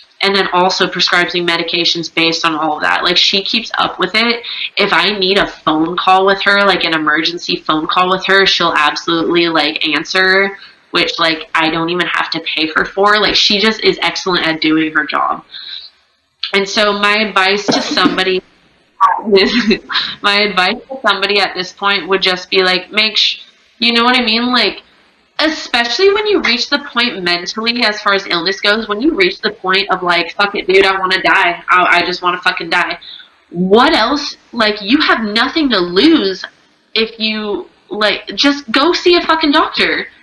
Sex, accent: female, American